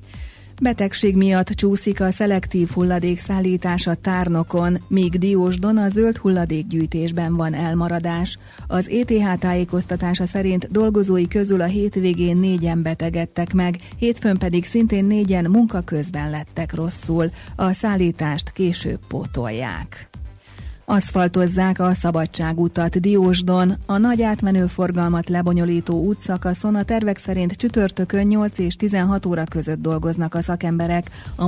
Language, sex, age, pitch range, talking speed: Hungarian, female, 30-49, 165-195 Hz, 115 wpm